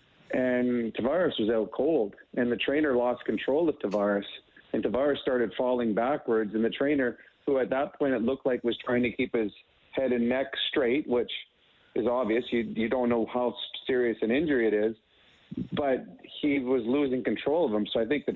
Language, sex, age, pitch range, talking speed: English, male, 40-59, 110-125 Hz, 195 wpm